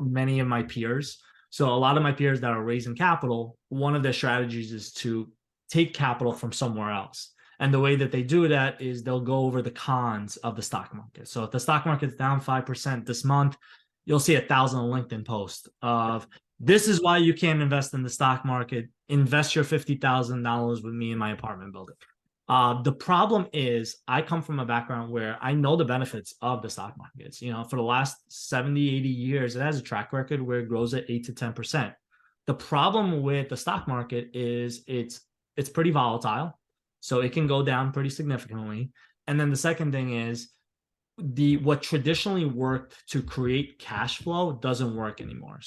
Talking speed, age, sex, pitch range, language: 195 wpm, 20-39, male, 120-145 Hz, English